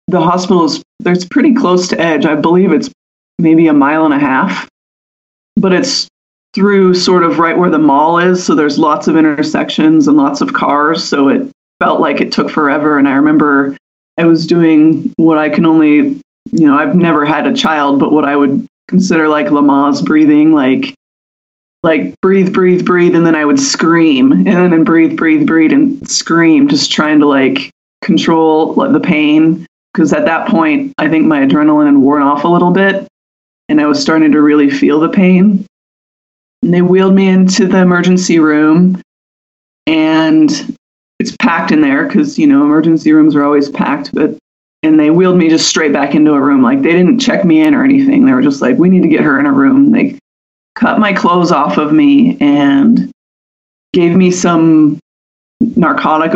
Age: 20-39